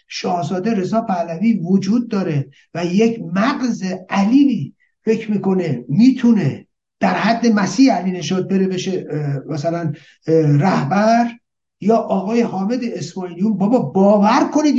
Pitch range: 180-230 Hz